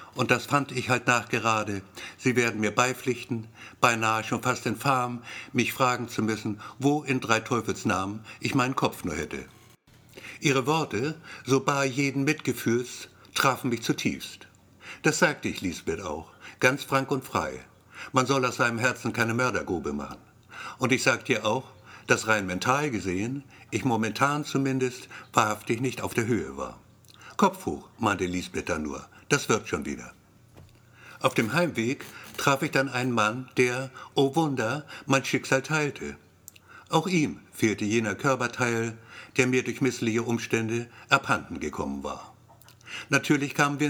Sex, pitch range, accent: male, 110-130 Hz, German